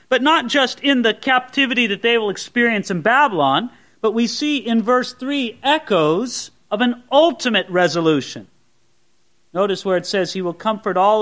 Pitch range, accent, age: 180-235 Hz, American, 40-59